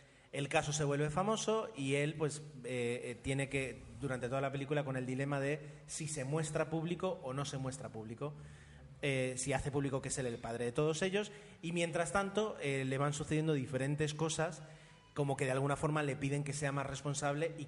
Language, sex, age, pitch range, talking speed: Spanish, male, 30-49, 130-160 Hz, 205 wpm